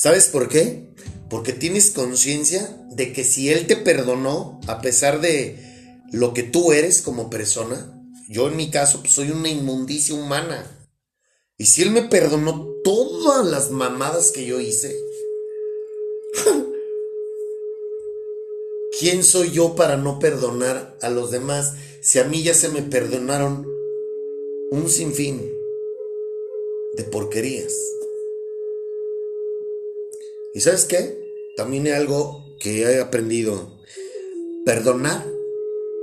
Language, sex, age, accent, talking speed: Spanish, male, 40-59, Mexican, 120 wpm